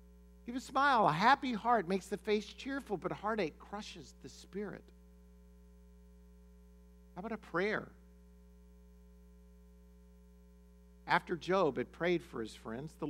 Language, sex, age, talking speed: English, male, 50-69, 125 wpm